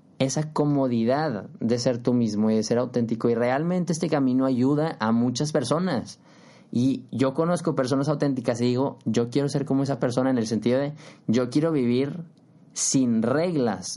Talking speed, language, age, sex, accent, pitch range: 170 wpm, Spanish, 20-39, male, Mexican, 120-155 Hz